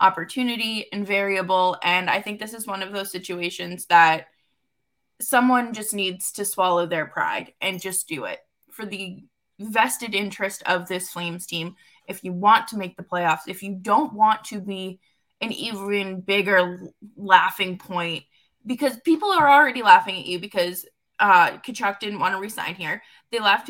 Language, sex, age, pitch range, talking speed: English, female, 20-39, 195-295 Hz, 170 wpm